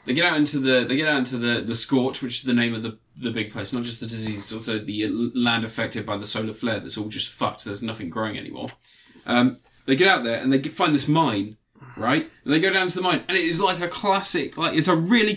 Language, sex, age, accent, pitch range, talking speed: English, male, 20-39, British, 120-180 Hz, 275 wpm